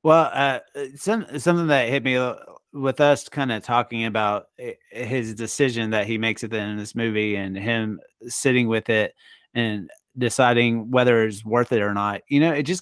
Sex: male